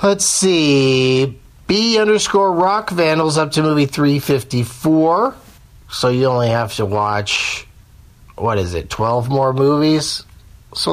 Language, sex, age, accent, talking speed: English, male, 40-59, American, 125 wpm